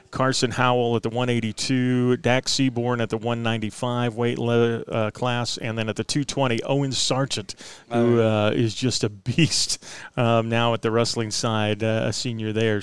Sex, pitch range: male, 115-130 Hz